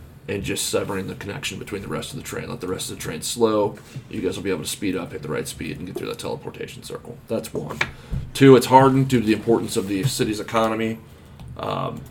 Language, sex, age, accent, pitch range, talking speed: English, male, 30-49, American, 105-125 Hz, 250 wpm